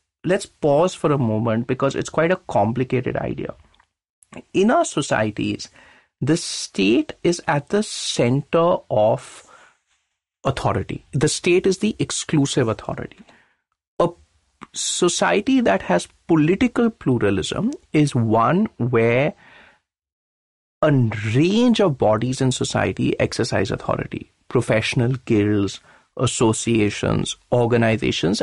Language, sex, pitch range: English, male, 115-180 Hz